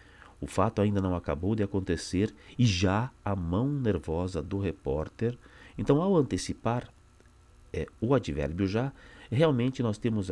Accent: Brazilian